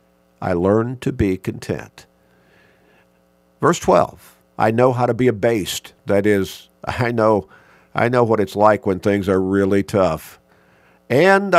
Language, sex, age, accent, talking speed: English, male, 50-69, American, 140 wpm